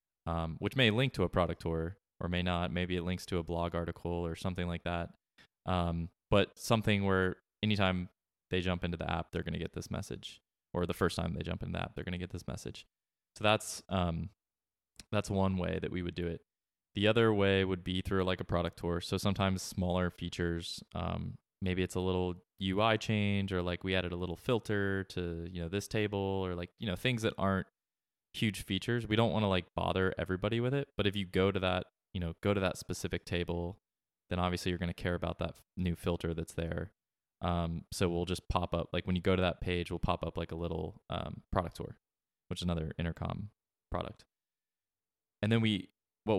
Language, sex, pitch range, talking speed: English, male, 85-100 Hz, 220 wpm